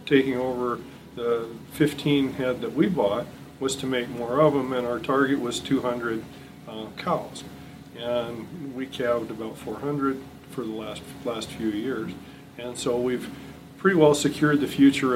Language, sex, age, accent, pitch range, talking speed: English, male, 40-59, American, 115-140 Hz, 160 wpm